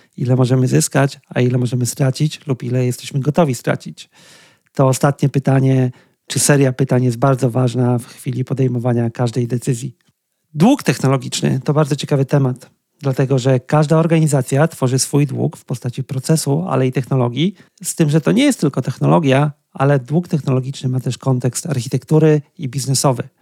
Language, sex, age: Polish, male, 40-59